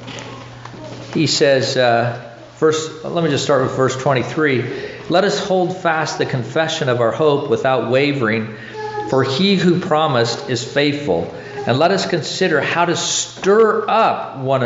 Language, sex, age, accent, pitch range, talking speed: English, male, 50-69, American, 115-155 Hz, 150 wpm